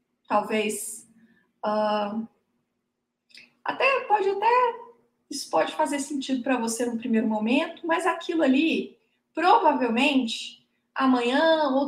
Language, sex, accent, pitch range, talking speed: Portuguese, female, Brazilian, 240-325 Hz, 95 wpm